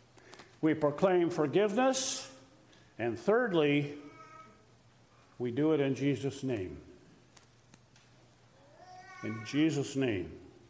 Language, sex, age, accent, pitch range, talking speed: English, male, 50-69, American, 125-160 Hz, 80 wpm